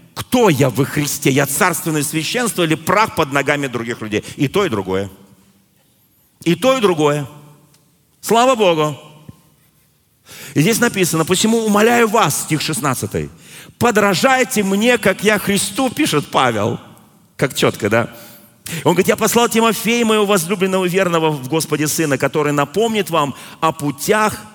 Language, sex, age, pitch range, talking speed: Russian, male, 40-59, 145-205 Hz, 140 wpm